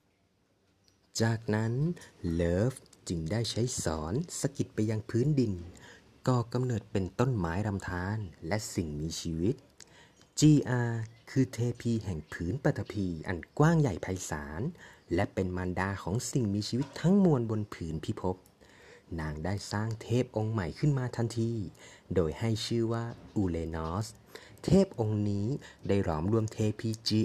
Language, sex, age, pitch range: Greek, male, 30-49, 95-125 Hz